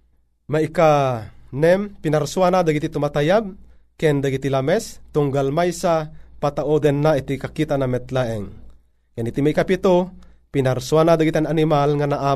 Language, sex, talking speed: Filipino, male, 130 wpm